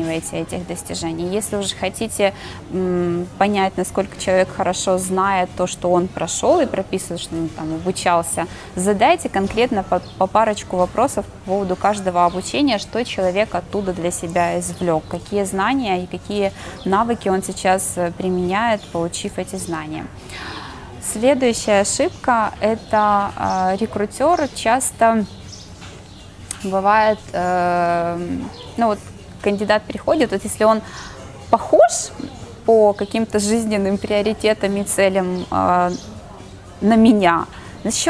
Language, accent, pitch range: Russian, native, 180-215 Hz